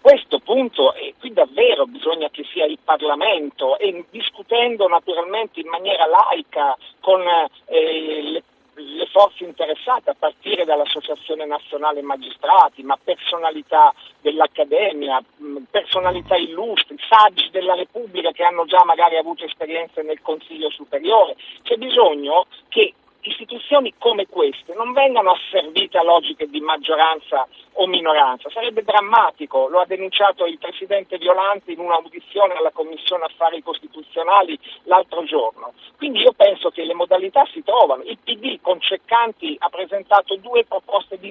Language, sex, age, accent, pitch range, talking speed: Italian, male, 50-69, native, 165-250 Hz, 140 wpm